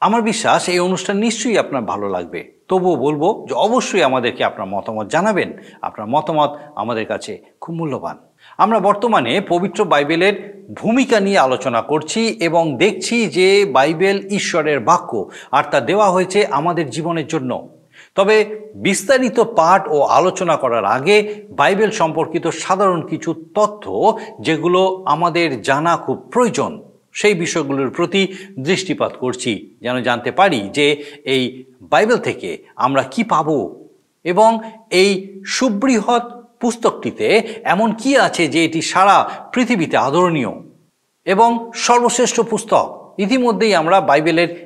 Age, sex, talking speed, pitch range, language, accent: 50-69, male, 125 wpm, 155-210 Hz, Bengali, native